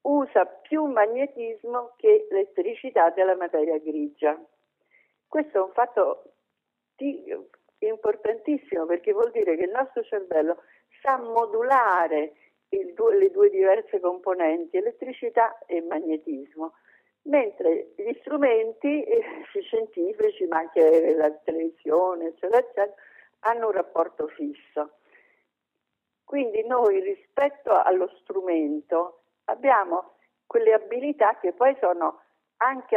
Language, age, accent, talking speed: Italian, 50-69, native, 100 wpm